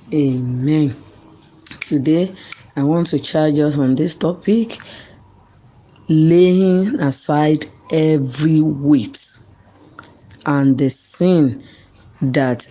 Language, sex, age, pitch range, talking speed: English, female, 40-59, 135-175 Hz, 85 wpm